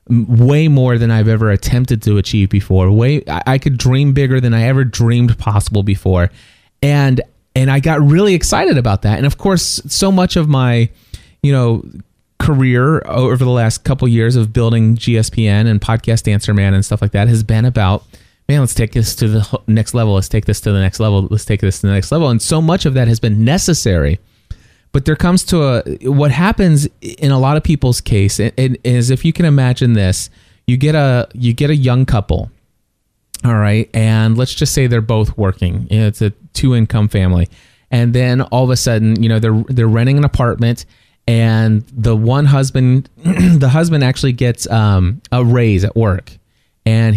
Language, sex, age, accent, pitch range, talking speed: English, male, 30-49, American, 110-130 Hz, 195 wpm